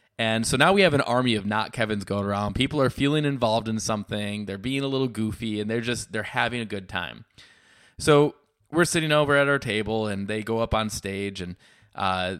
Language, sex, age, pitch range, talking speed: English, male, 20-39, 105-135 Hz, 225 wpm